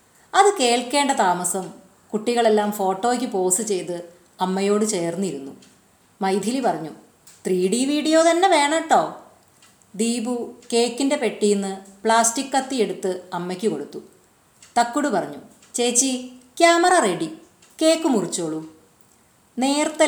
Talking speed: 100 wpm